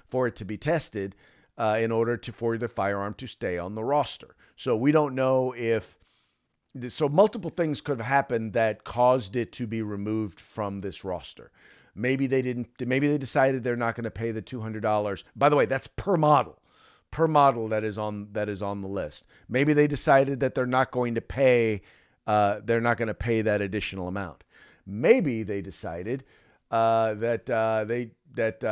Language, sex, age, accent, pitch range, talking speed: English, male, 40-59, American, 105-135 Hz, 200 wpm